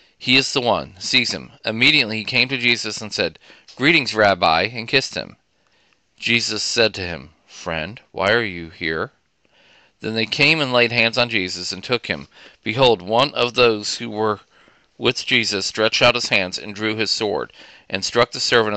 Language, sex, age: English, male, 40-59